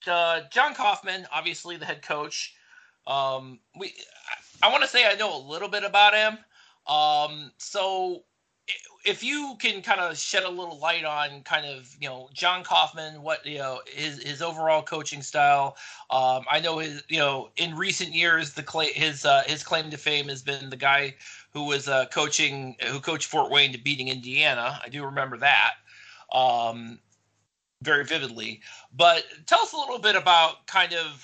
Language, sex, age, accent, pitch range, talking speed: English, male, 30-49, American, 140-175 Hz, 180 wpm